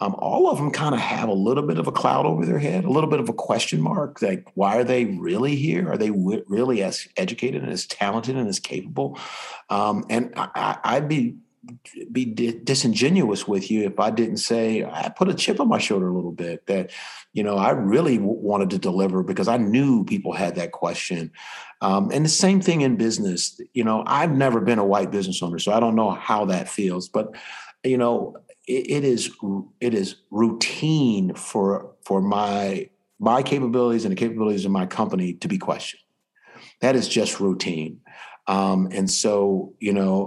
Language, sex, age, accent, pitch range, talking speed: English, male, 50-69, American, 95-125 Hz, 200 wpm